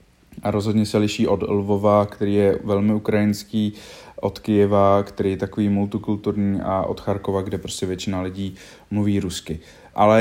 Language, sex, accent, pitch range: Czech, male, native, 100-110 Hz